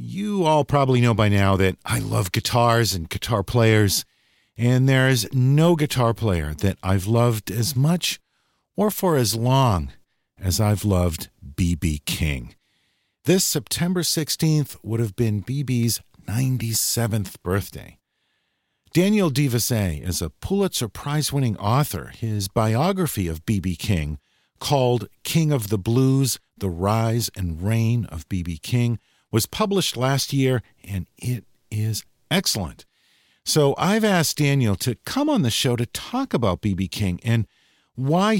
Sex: male